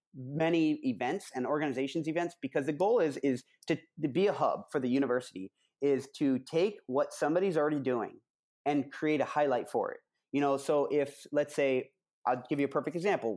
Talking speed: 195 wpm